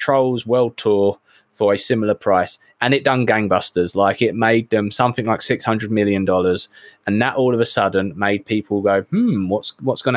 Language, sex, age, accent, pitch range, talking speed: English, male, 20-39, British, 105-125 Hz, 195 wpm